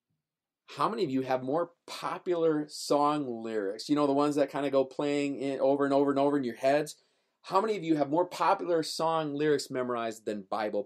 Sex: male